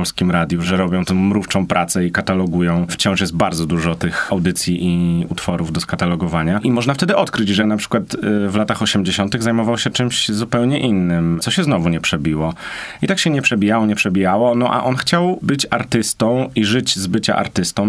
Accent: native